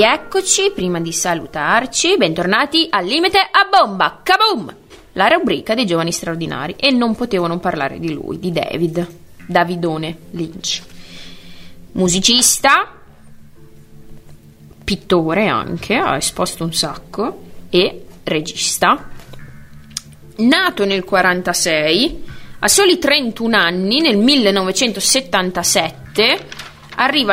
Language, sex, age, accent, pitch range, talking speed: Italian, female, 20-39, native, 165-240 Hz, 100 wpm